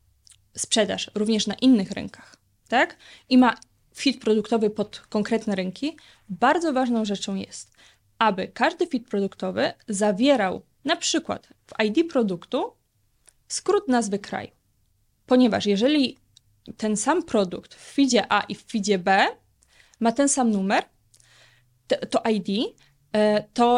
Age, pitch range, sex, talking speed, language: 20-39, 205-265 Hz, female, 125 wpm, Polish